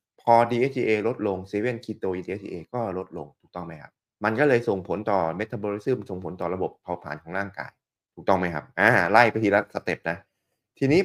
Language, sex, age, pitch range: Thai, male, 20-39, 85-120 Hz